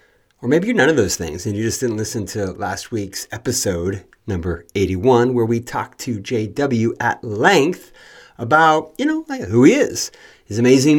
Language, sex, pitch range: English, male, 95-120 Hz